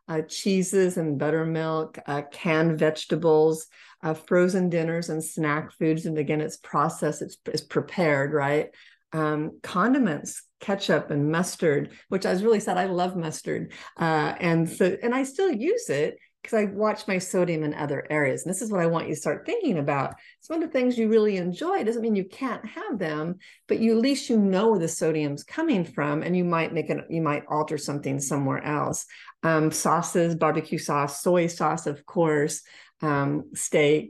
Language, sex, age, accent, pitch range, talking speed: English, female, 50-69, American, 155-195 Hz, 190 wpm